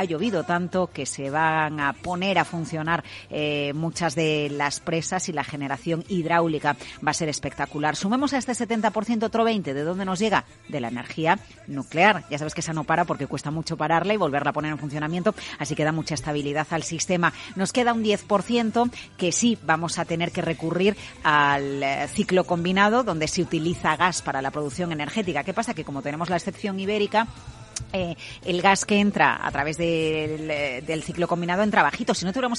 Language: Spanish